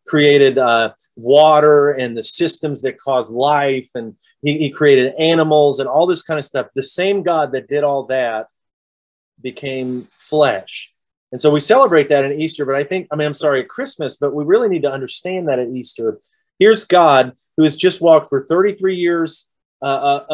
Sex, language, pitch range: male, English, 130-155 Hz